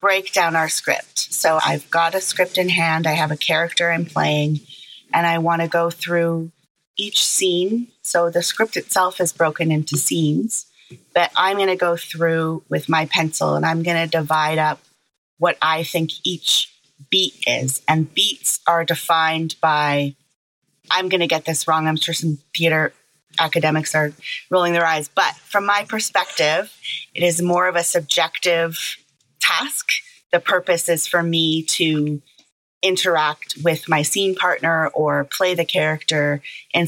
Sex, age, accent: female, 30-49, American